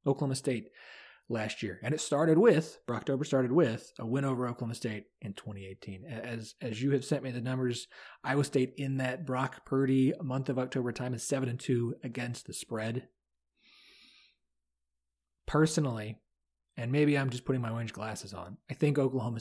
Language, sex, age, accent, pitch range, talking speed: English, male, 30-49, American, 105-135 Hz, 175 wpm